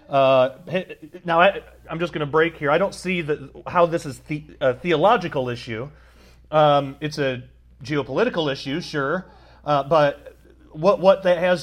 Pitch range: 130-160 Hz